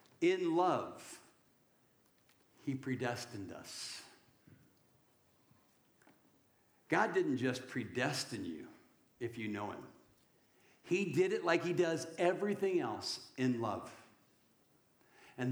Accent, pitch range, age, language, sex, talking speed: American, 130-195 Hz, 60-79, English, male, 95 wpm